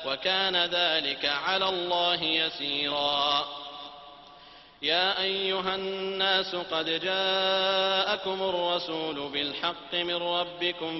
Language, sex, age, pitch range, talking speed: French, male, 30-49, 160-185 Hz, 75 wpm